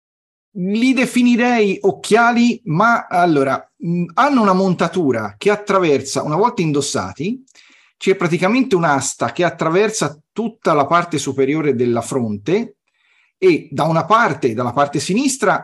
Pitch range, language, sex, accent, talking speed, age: 135-195 Hz, Italian, male, native, 120 wpm, 40-59